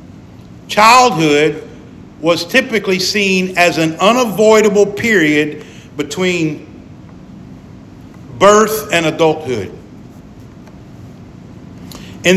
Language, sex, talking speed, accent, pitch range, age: English, male, 65 wpm, American, 145-195 Hz, 50-69